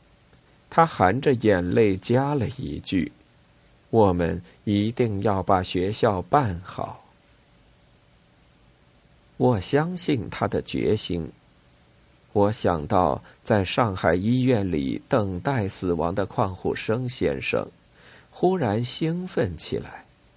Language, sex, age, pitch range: Chinese, male, 50-69, 90-125 Hz